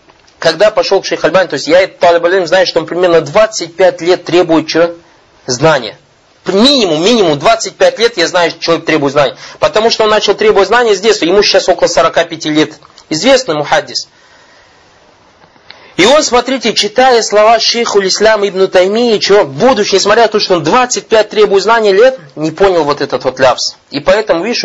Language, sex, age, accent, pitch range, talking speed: Russian, male, 20-39, native, 160-215 Hz, 180 wpm